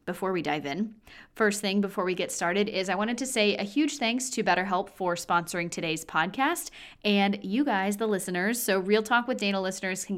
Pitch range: 180-230 Hz